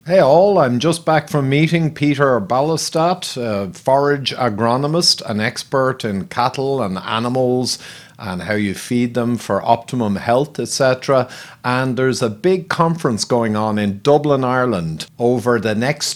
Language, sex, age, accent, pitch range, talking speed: English, male, 50-69, Irish, 115-140 Hz, 150 wpm